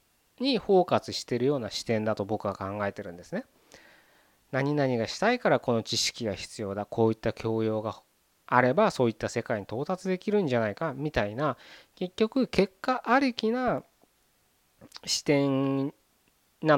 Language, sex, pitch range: Japanese, male, 110-185 Hz